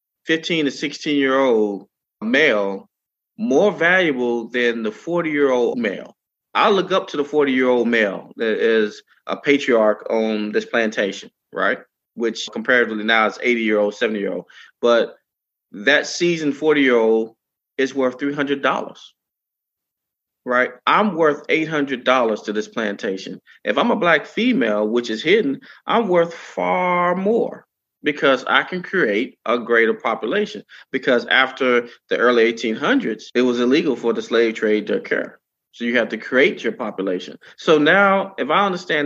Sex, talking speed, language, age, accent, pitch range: male, 140 wpm, English, 30-49, American, 115-150 Hz